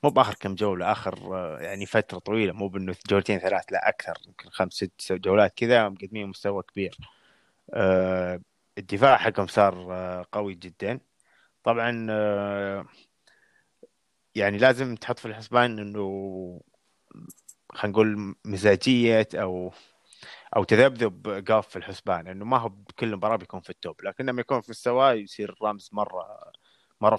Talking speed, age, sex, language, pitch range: 130 wpm, 20-39, male, Arabic, 95-110 Hz